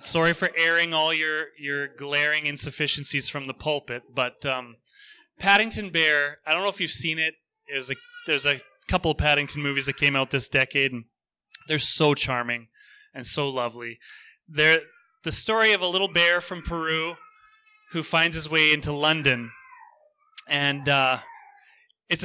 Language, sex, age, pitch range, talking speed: English, male, 20-39, 135-175 Hz, 160 wpm